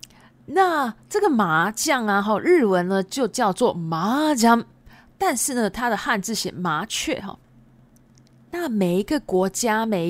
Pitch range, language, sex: 175-270 Hz, Japanese, female